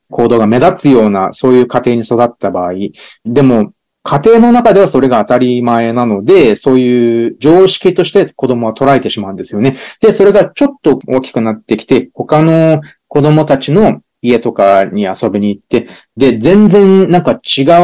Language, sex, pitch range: Japanese, male, 125-195 Hz